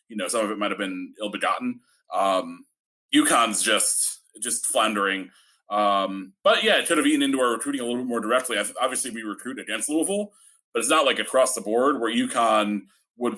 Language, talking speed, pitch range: English, 205 wpm, 100-135 Hz